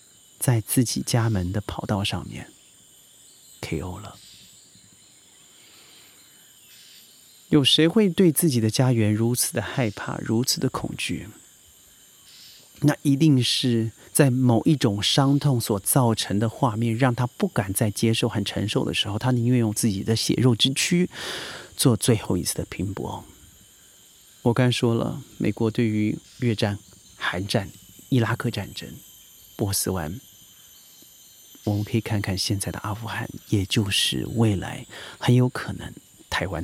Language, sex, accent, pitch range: Chinese, male, native, 105-140 Hz